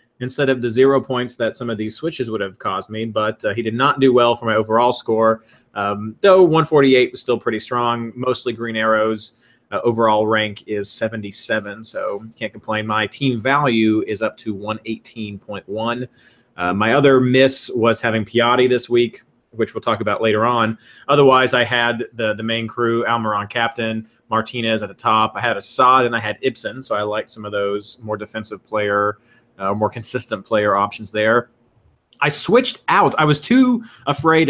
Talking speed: 185 wpm